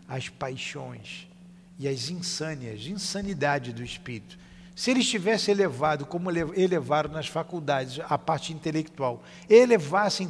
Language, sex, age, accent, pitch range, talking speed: Portuguese, male, 50-69, Brazilian, 145-190 Hz, 115 wpm